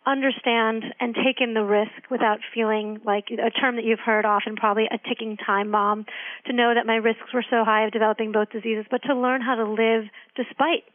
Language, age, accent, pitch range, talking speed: English, 40-59, American, 220-245 Hz, 215 wpm